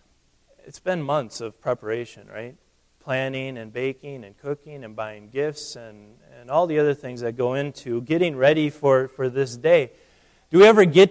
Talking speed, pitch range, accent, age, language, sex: 180 wpm, 125-160 Hz, American, 30-49, English, male